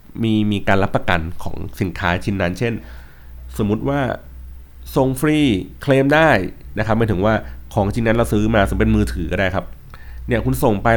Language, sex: Thai, male